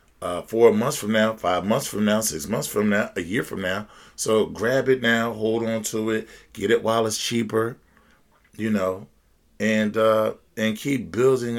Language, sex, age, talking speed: English, male, 40-59, 190 wpm